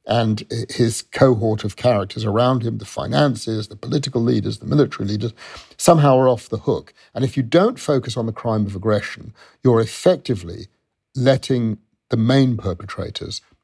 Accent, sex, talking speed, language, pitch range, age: British, male, 160 wpm, English, 105-135 Hz, 50-69